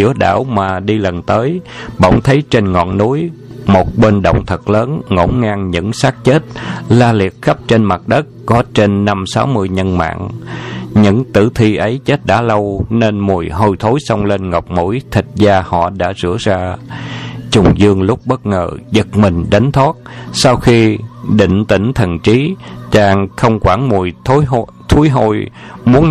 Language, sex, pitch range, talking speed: Vietnamese, male, 95-120 Hz, 175 wpm